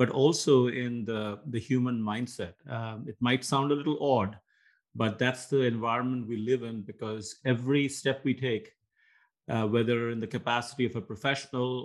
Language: English